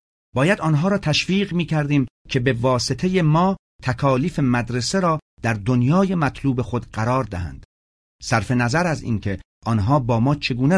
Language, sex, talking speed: Persian, male, 145 wpm